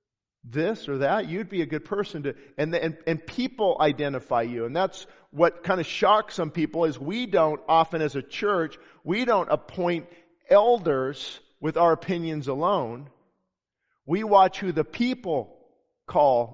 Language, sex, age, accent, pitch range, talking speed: English, male, 50-69, American, 145-175 Hz, 165 wpm